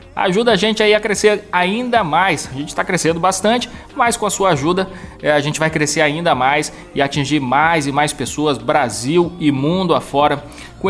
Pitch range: 140-175 Hz